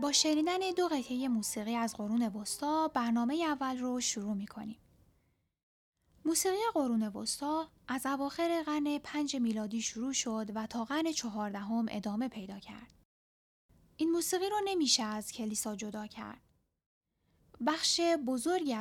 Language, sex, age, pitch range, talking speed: Persian, female, 10-29, 220-300 Hz, 125 wpm